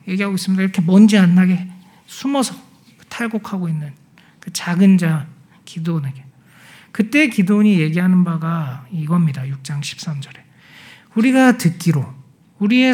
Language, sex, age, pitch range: Korean, male, 40-59, 165-220 Hz